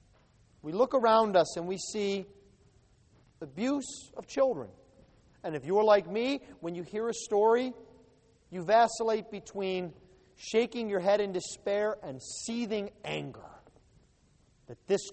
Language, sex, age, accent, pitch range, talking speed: English, male, 40-59, American, 175-250 Hz, 130 wpm